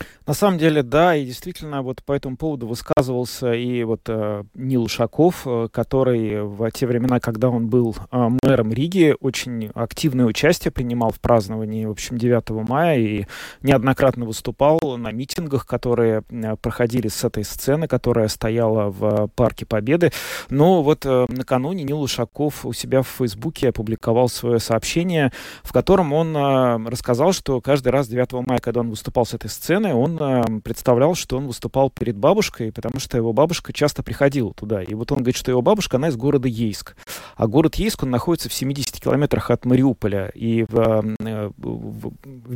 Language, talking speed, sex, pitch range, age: Russian, 165 wpm, male, 115-135 Hz, 20-39